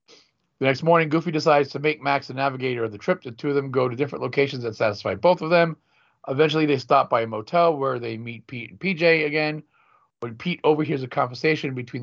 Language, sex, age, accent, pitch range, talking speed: English, male, 40-59, American, 125-155 Hz, 225 wpm